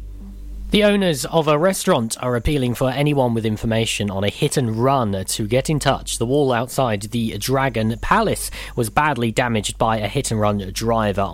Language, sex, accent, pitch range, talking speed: English, male, British, 110-150 Hz, 185 wpm